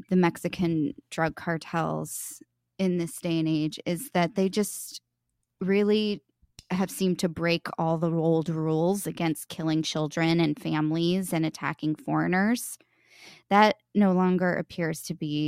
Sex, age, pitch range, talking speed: female, 20-39, 160-195 Hz, 140 wpm